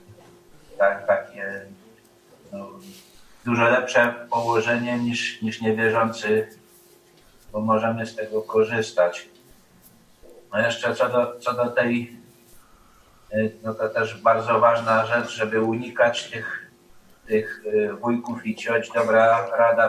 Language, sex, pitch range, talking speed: Polish, male, 110-120 Hz, 110 wpm